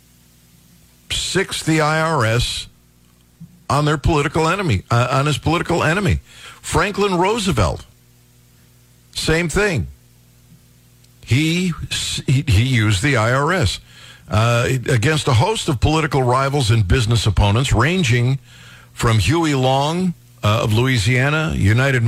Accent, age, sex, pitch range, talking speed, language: American, 50-69, male, 105-140 Hz, 110 wpm, English